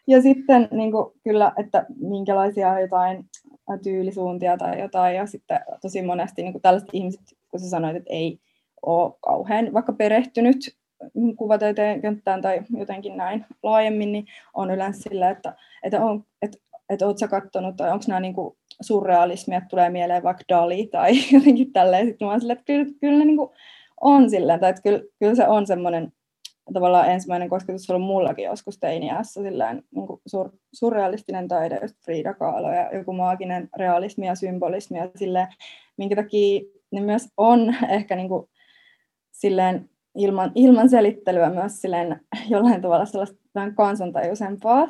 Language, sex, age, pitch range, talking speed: Finnish, female, 20-39, 185-225 Hz, 150 wpm